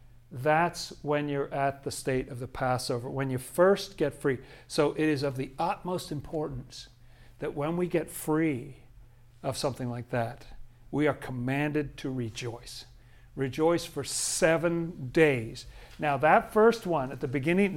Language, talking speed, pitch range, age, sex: English, 155 wpm, 125-165 Hz, 50-69, male